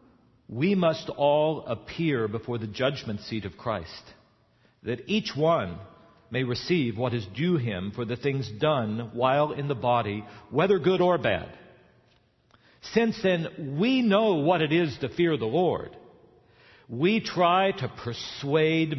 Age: 60-79